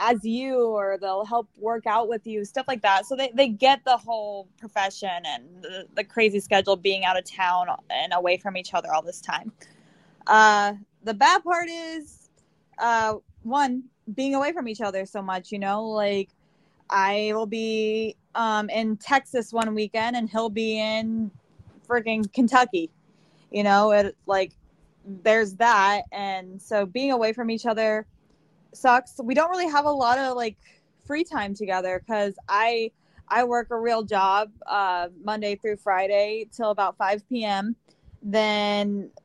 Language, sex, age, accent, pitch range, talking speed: English, female, 10-29, American, 195-235 Hz, 165 wpm